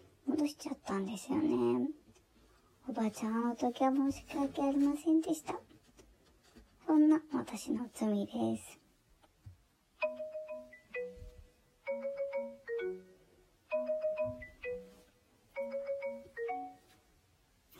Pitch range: 210-280 Hz